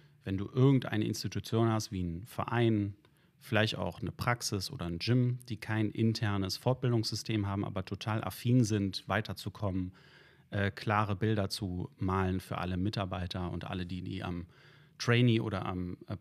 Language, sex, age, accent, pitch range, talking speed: German, male, 30-49, German, 95-115 Hz, 150 wpm